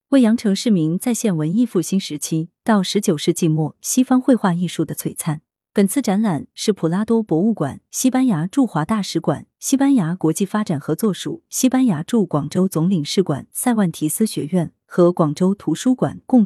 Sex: female